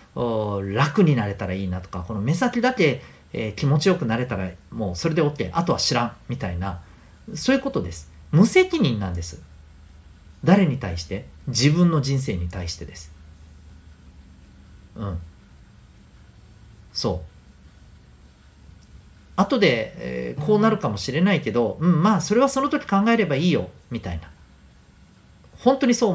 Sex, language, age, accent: male, Japanese, 40-59, native